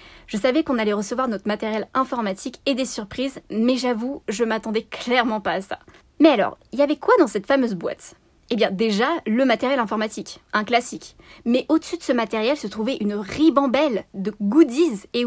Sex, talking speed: female, 195 wpm